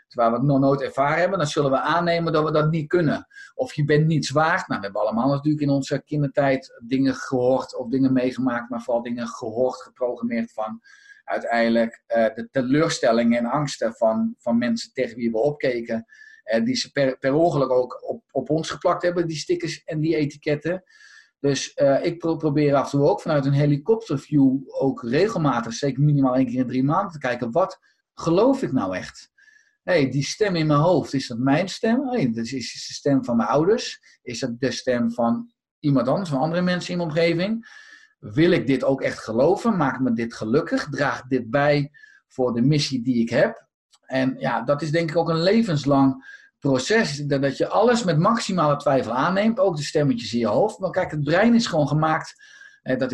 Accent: Dutch